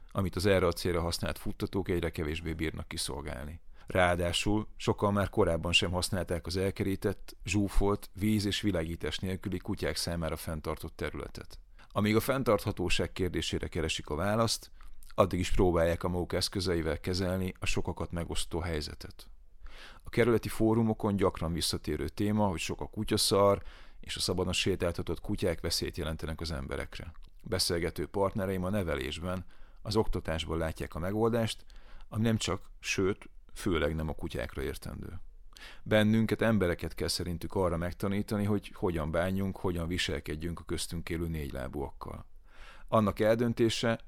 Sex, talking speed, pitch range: male, 135 wpm, 85-105 Hz